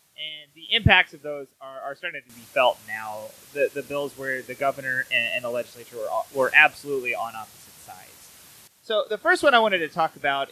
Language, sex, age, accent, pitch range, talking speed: English, male, 20-39, American, 135-175 Hz, 215 wpm